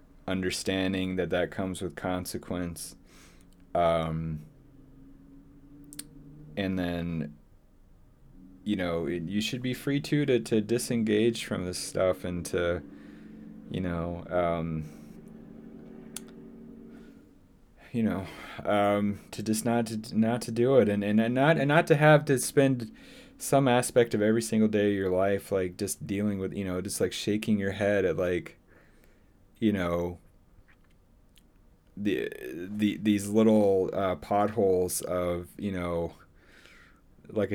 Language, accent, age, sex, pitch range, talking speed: English, American, 20-39, male, 90-110 Hz, 130 wpm